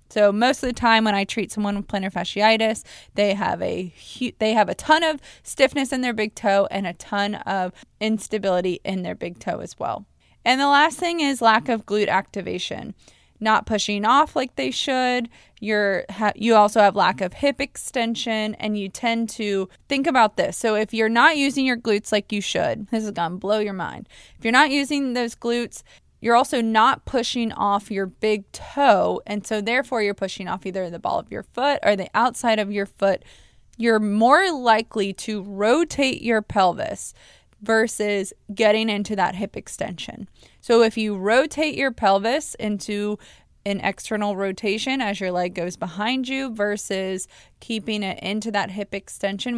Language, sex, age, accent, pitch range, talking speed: English, female, 20-39, American, 200-245 Hz, 185 wpm